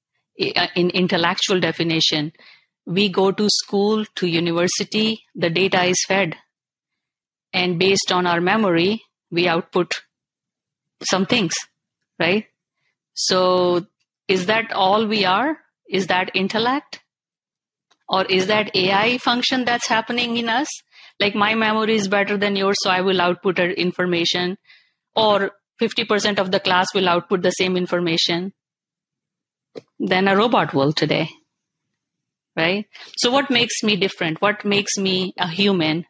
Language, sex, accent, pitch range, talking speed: English, female, Indian, 175-205 Hz, 135 wpm